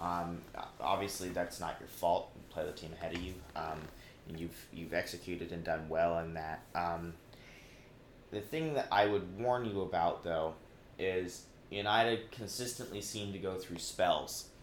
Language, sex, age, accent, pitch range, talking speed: English, male, 30-49, American, 85-105 Hz, 170 wpm